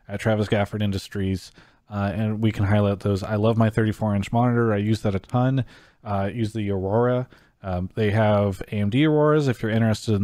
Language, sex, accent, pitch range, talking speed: English, male, American, 100-115 Hz, 200 wpm